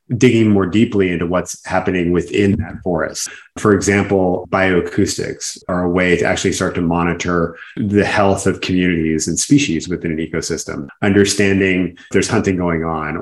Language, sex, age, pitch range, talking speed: English, male, 30-49, 85-100 Hz, 155 wpm